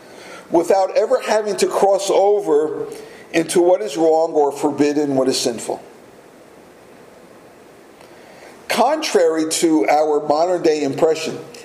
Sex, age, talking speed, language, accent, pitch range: male, 50-69, 110 wpm, English, American, 150-220 Hz